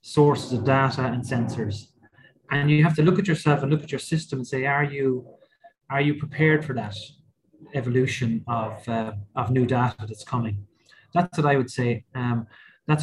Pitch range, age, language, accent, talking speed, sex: 110-135 Hz, 30-49, English, Irish, 190 wpm, male